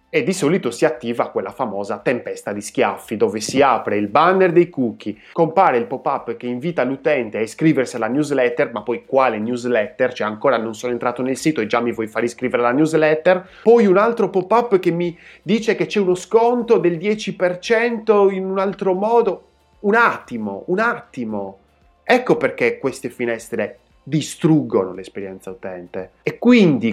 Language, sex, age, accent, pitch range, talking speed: Italian, male, 20-39, native, 120-190 Hz, 170 wpm